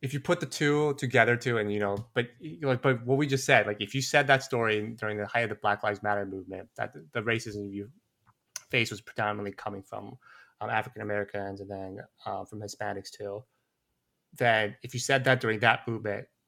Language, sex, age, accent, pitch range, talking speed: English, male, 30-49, American, 105-135 Hz, 210 wpm